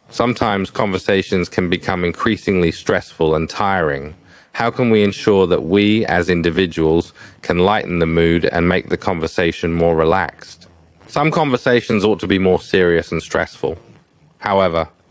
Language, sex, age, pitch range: Thai, male, 40-59, 80-105 Hz